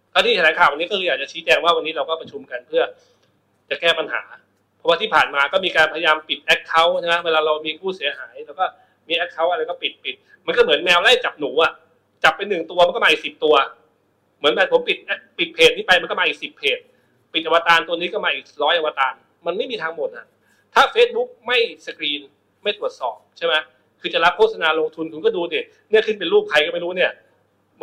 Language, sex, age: Thai, male, 20-39